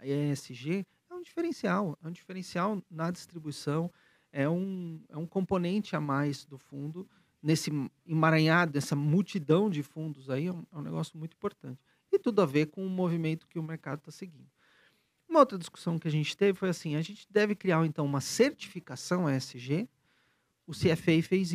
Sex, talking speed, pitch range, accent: male, 180 wpm, 145-185 Hz, Brazilian